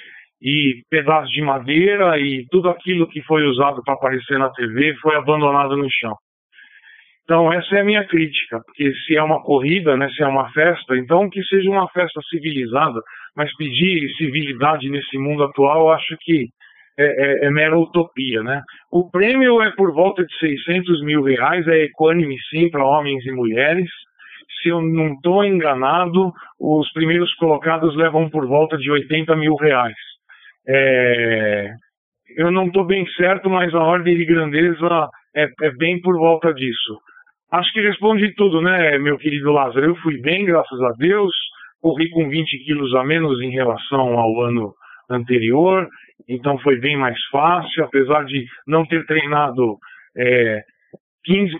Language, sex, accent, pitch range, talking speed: Portuguese, male, Brazilian, 135-170 Hz, 165 wpm